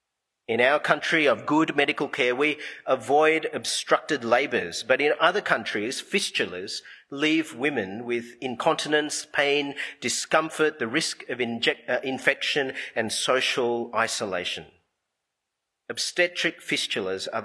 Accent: Australian